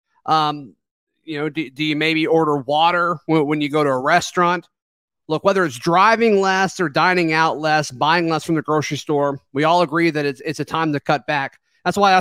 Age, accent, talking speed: 30-49, American, 220 wpm